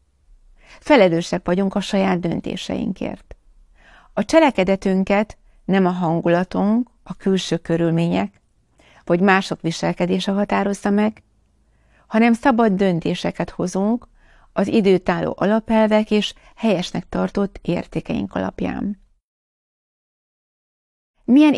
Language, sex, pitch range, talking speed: Hungarian, female, 170-215 Hz, 85 wpm